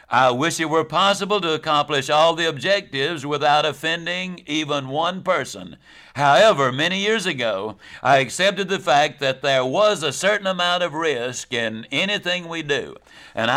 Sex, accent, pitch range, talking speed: male, American, 140-185 Hz, 160 wpm